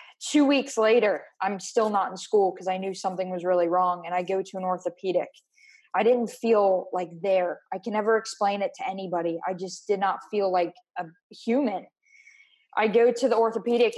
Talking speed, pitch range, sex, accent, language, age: 200 wpm, 185-225 Hz, female, American, English, 20-39